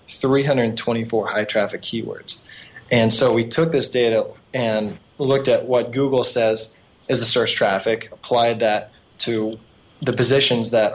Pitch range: 110-125 Hz